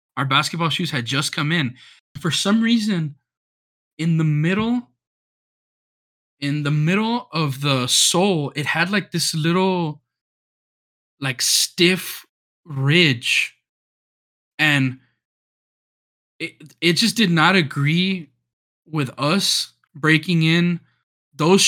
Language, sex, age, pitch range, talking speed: English, male, 20-39, 135-175 Hz, 110 wpm